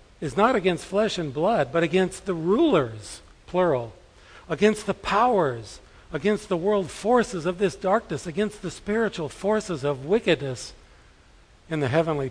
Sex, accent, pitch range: male, American, 130-175 Hz